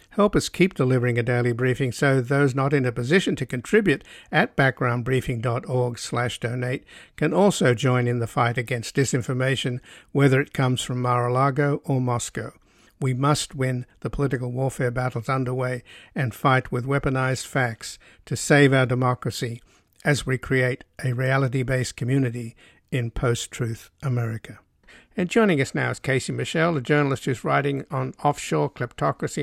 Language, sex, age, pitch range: English, male, 60-79, 125-145 Hz